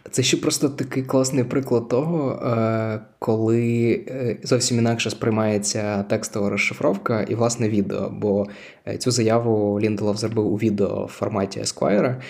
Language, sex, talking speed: Ukrainian, male, 130 wpm